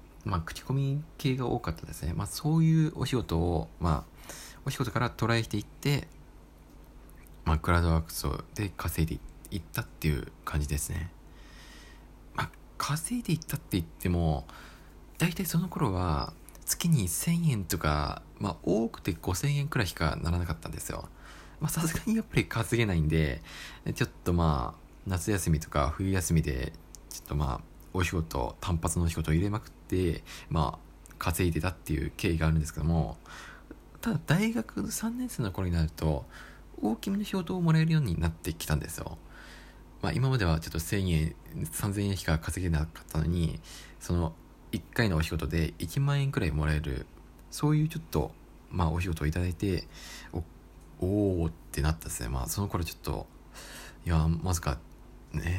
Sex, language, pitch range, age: male, Japanese, 80-115 Hz, 20-39